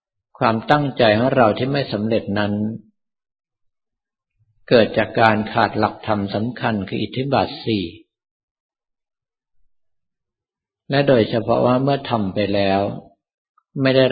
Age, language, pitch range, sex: 50-69, Thai, 105-125 Hz, male